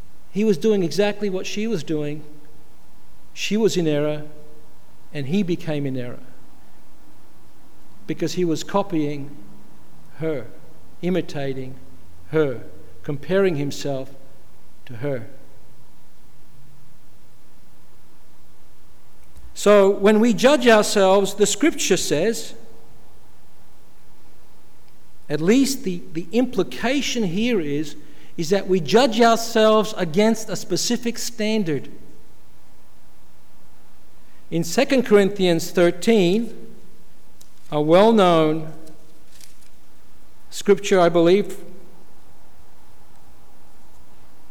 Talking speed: 80 wpm